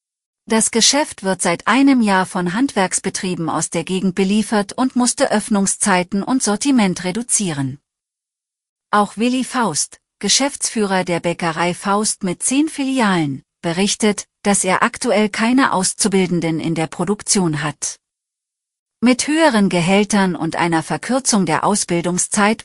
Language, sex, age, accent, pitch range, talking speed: German, female, 40-59, German, 180-225 Hz, 120 wpm